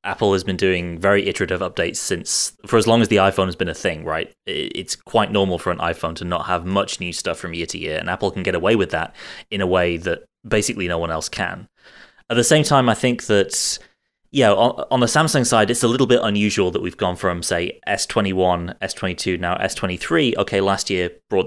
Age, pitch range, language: 20-39, 90-115 Hz, English